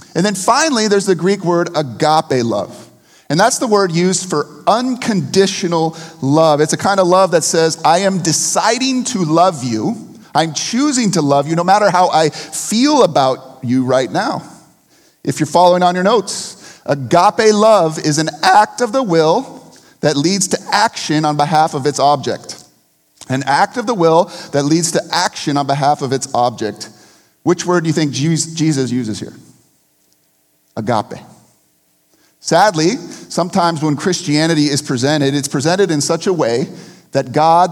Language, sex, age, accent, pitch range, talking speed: English, male, 30-49, American, 140-180 Hz, 165 wpm